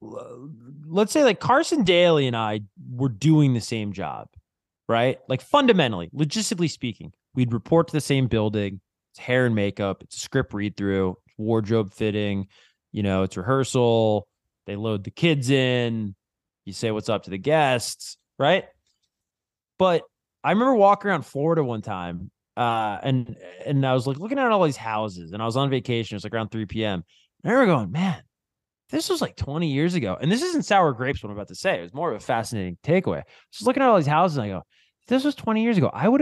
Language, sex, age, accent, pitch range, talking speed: English, male, 20-39, American, 105-165 Hz, 210 wpm